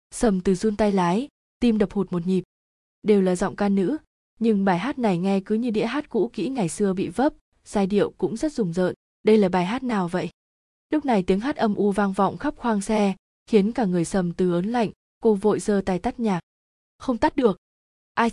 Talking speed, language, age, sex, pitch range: 230 wpm, Vietnamese, 20-39, female, 185-225 Hz